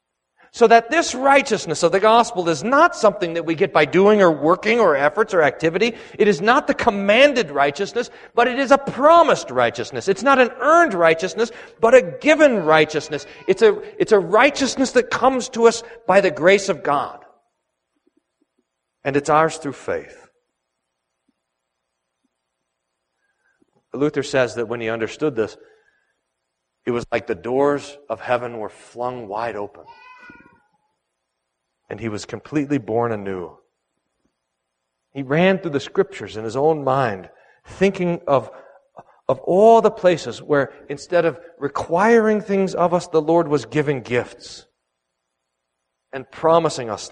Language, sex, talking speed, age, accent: English, male, 145 wpm, 40-59, American